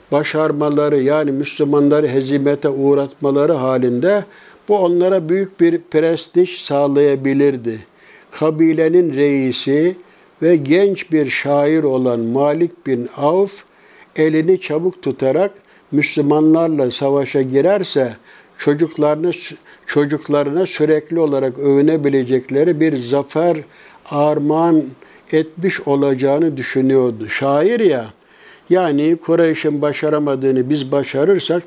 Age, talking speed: 60-79, 85 wpm